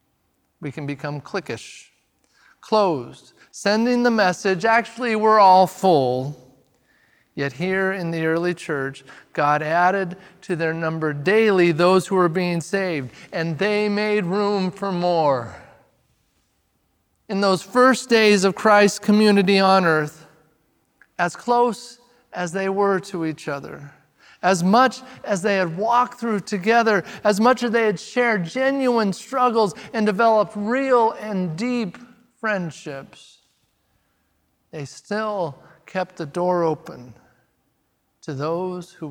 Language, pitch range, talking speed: English, 145-210 Hz, 125 wpm